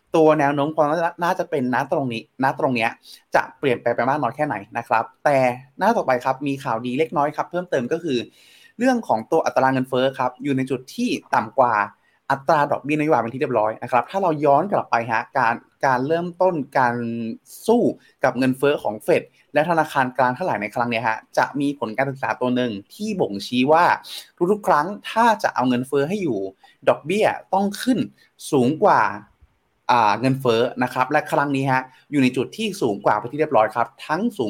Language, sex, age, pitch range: Thai, male, 20-39, 125-160 Hz